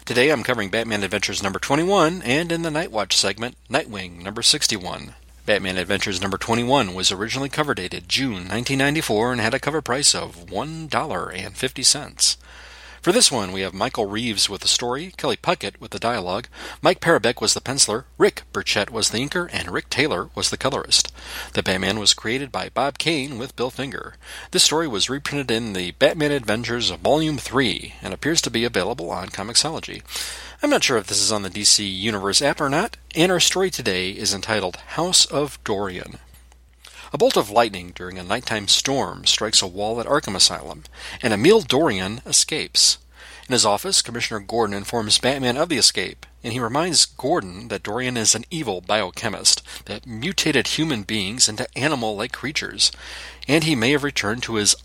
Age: 40-59